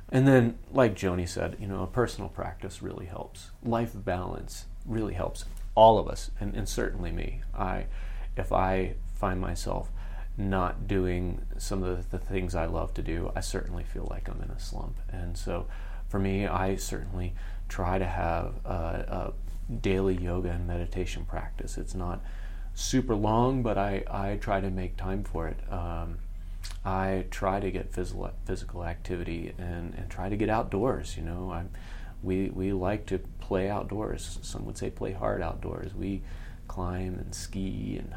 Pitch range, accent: 85-100 Hz, American